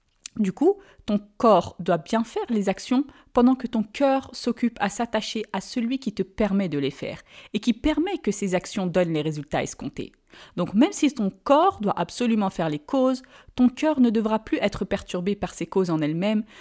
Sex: female